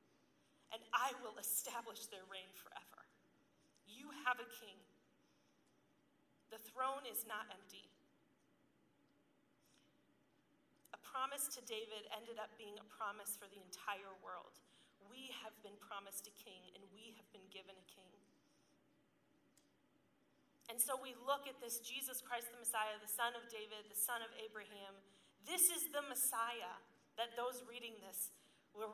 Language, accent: English, American